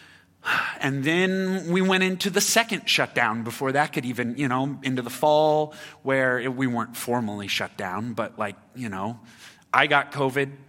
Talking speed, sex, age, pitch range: 170 wpm, male, 30-49, 120-180 Hz